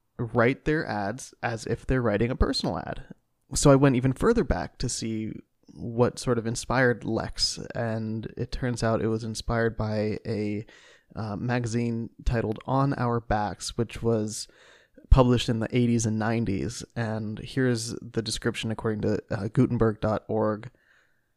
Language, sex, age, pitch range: English, male, 20-39, 110-130 Hz